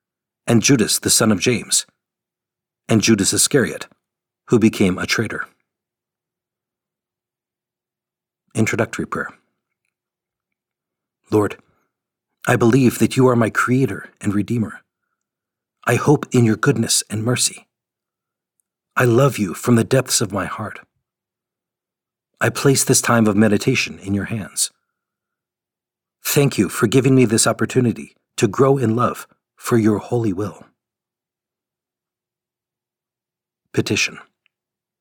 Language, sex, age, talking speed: English, male, 50-69, 115 wpm